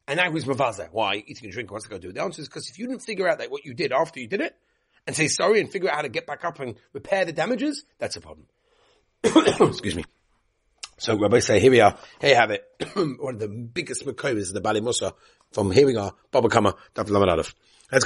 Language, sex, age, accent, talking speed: English, male, 40-59, British, 255 wpm